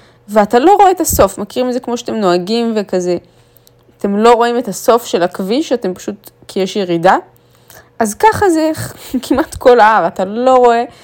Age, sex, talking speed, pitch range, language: 20-39, female, 180 wpm, 190-240 Hz, Hebrew